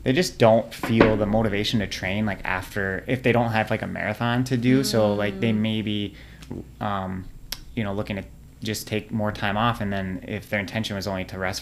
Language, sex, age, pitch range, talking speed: English, male, 30-49, 100-115 Hz, 220 wpm